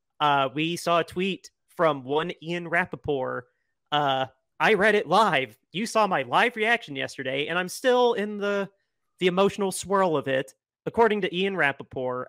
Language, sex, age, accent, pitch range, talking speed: English, male, 30-49, American, 140-180 Hz, 165 wpm